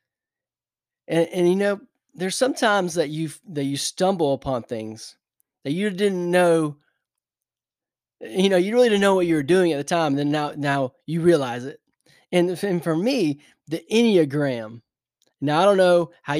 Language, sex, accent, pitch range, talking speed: English, male, American, 140-175 Hz, 175 wpm